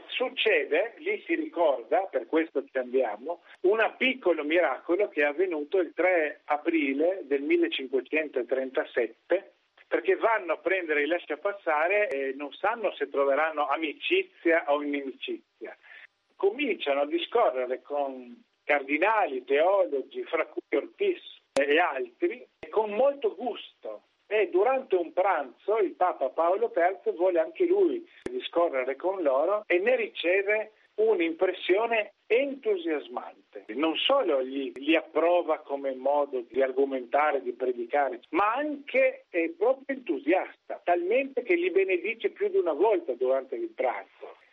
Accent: native